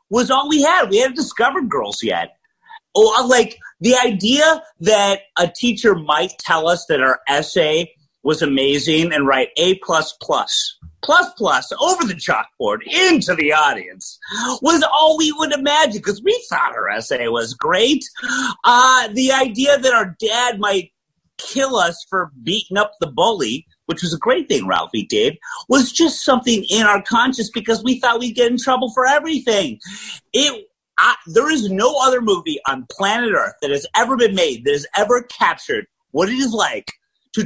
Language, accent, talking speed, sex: English, American, 170 wpm, male